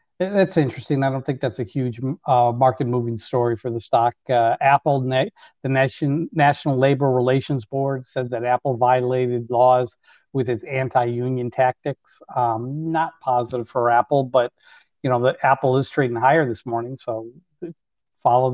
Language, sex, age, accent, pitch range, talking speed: English, male, 40-59, American, 120-135 Hz, 160 wpm